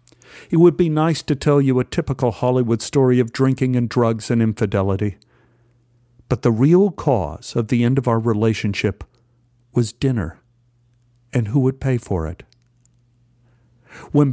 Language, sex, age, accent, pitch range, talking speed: English, male, 50-69, American, 120-140 Hz, 150 wpm